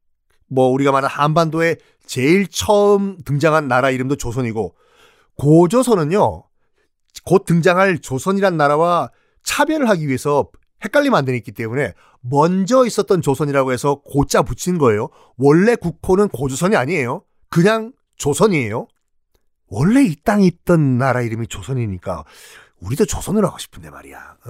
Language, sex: Korean, male